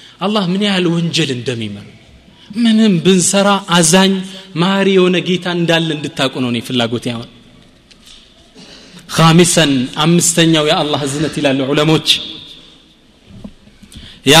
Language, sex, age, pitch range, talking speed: Amharic, male, 30-49, 140-190 Hz, 90 wpm